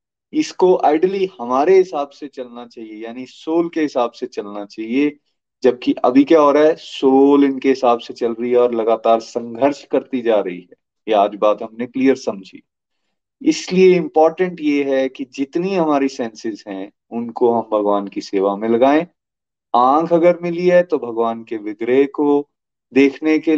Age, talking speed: 30-49, 170 wpm